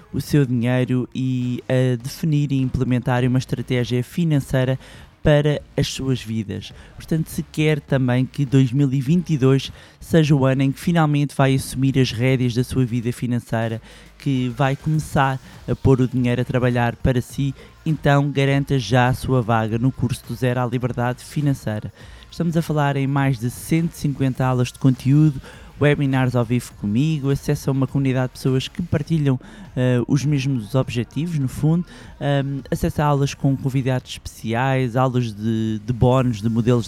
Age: 20-39